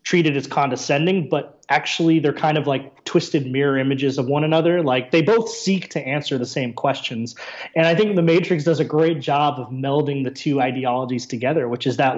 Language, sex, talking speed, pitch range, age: English, male, 205 wpm, 130-160 Hz, 30-49